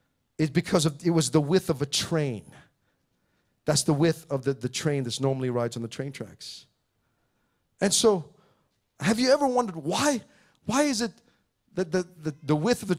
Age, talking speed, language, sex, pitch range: 40-59, 190 wpm, English, male, 160-235 Hz